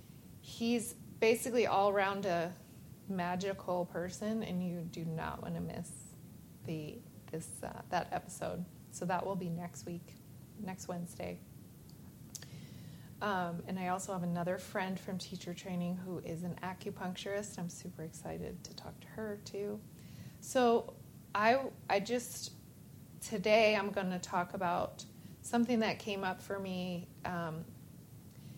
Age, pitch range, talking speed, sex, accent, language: 30-49, 170-205 Hz, 135 wpm, female, American, English